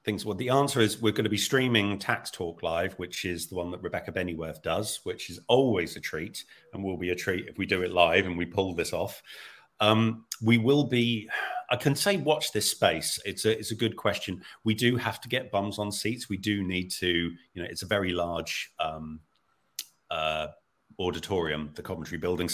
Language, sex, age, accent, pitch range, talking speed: English, male, 40-59, British, 90-110 Hz, 215 wpm